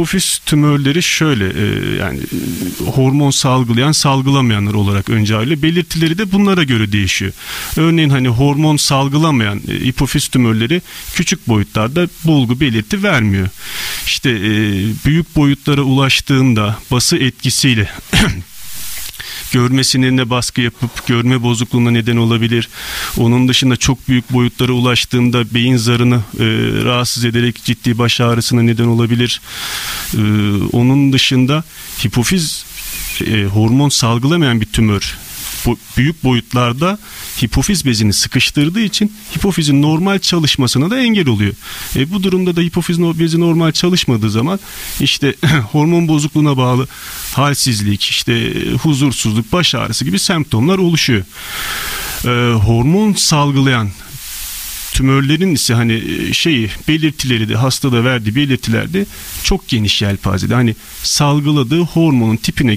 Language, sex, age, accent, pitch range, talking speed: Turkish, male, 40-59, native, 115-155 Hz, 110 wpm